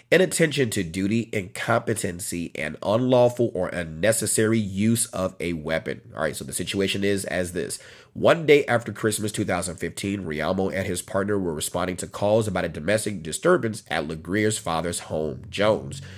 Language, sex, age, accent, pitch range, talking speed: English, male, 30-49, American, 90-115 Hz, 155 wpm